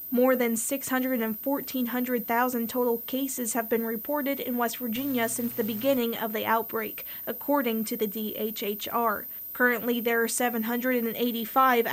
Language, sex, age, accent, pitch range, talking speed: English, female, 20-39, American, 230-260 Hz, 125 wpm